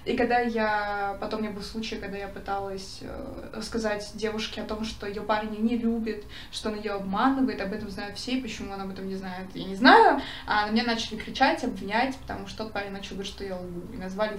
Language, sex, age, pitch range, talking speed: Russian, female, 20-39, 195-225 Hz, 225 wpm